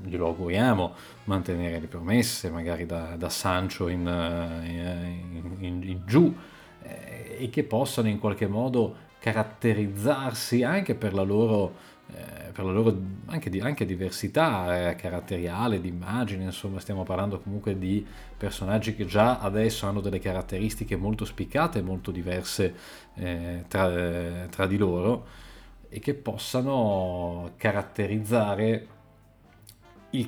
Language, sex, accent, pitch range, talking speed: Italian, male, native, 90-110 Hz, 125 wpm